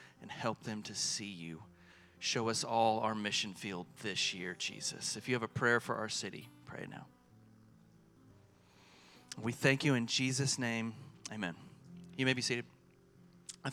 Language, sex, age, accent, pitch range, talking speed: English, male, 30-49, American, 110-145 Hz, 165 wpm